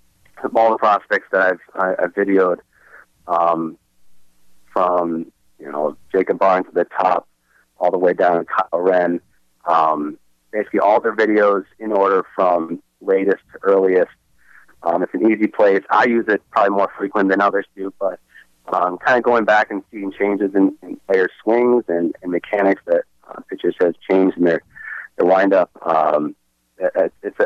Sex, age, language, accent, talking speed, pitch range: male, 30-49, English, American, 165 wpm, 85-105 Hz